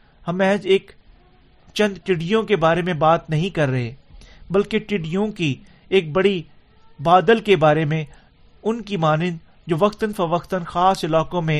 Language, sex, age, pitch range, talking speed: Urdu, male, 50-69, 155-185 Hz, 90 wpm